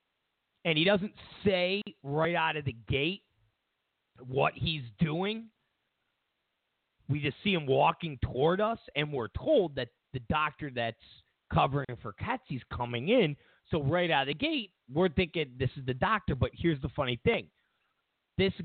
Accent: American